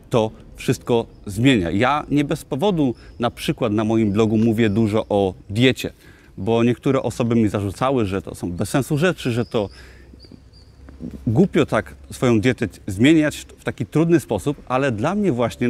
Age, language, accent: 30-49, Polish, native